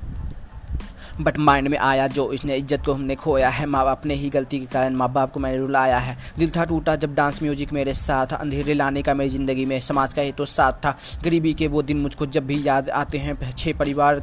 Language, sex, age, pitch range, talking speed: Hindi, male, 20-39, 140-160 Hz, 230 wpm